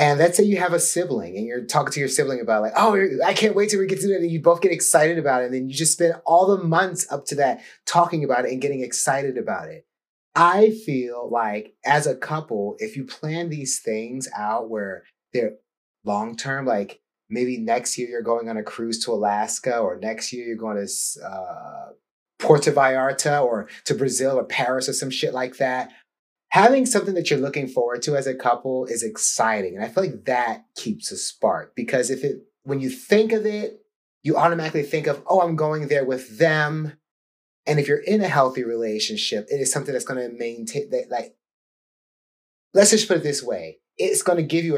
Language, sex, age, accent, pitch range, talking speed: English, male, 30-49, American, 125-175 Hz, 215 wpm